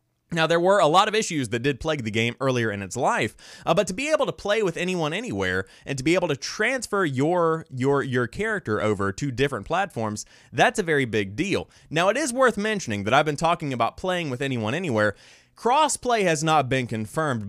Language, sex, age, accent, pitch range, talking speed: English, male, 20-39, American, 110-175 Hz, 220 wpm